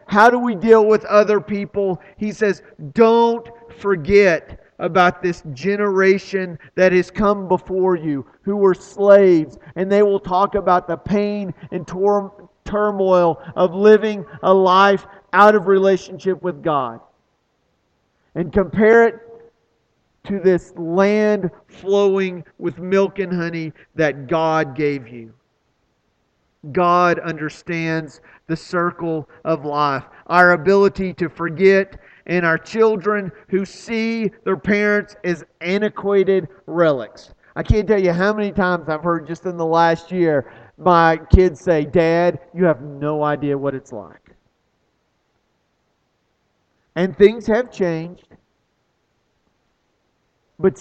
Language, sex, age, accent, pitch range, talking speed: English, male, 40-59, American, 165-200 Hz, 125 wpm